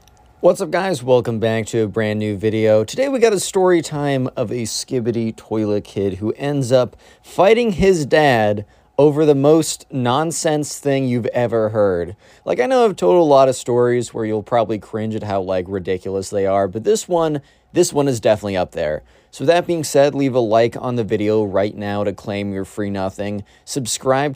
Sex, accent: male, American